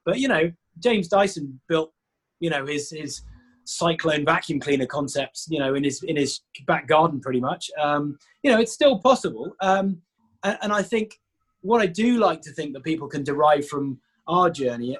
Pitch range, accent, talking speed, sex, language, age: 150-190 Hz, British, 190 wpm, male, English, 20-39